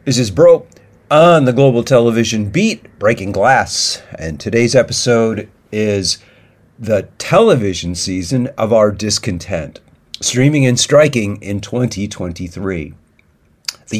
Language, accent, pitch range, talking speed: French, American, 95-125 Hz, 110 wpm